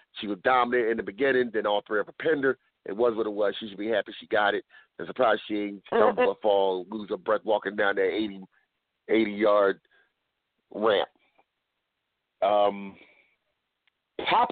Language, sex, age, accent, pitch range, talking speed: English, male, 50-69, American, 105-140 Hz, 165 wpm